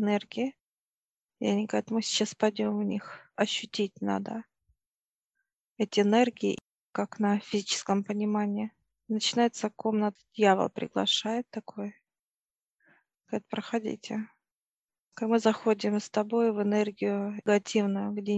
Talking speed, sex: 110 wpm, female